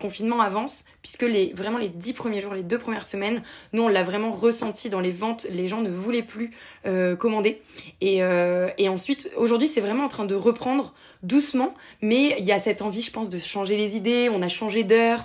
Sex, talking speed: female, 225 wpm